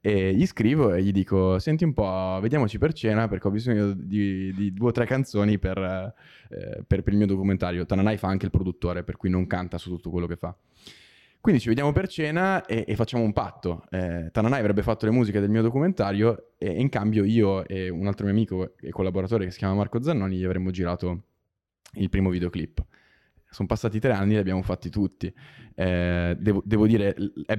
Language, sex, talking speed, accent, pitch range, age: Italian, male, 210 wpm, native, 95-110 Hz, 20-39